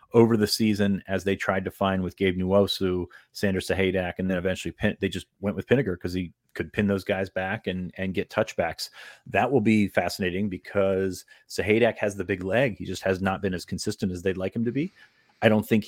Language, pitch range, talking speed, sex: English, 95-105 Hz, 225 wpm, male